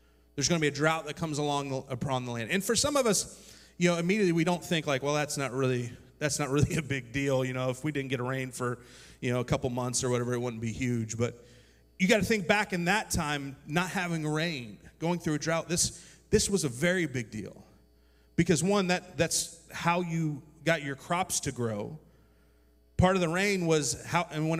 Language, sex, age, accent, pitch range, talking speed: English, male, 30-49, American, 130-165 Hz, 235 wpm